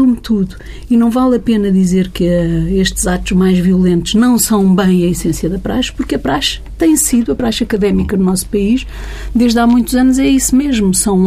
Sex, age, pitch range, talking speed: female, 50-69, 180-225 Hz, 210 wpm